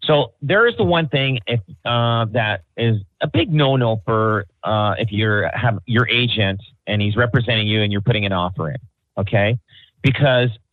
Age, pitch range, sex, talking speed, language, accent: 40-59, 110-135 Hz, male, 180 wpm, English, American